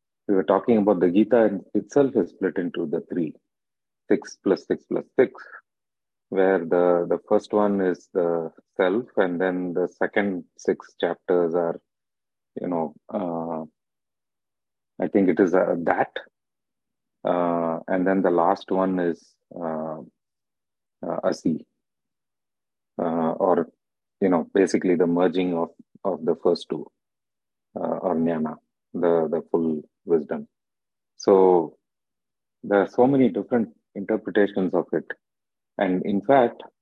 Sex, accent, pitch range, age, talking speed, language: male, Indian, 85-100 Hz, 30-49, 130 wpm, English